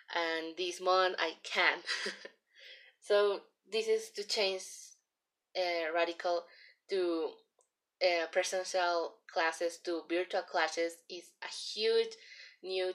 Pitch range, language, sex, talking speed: 175-215 Hz, English, female, 105 wpm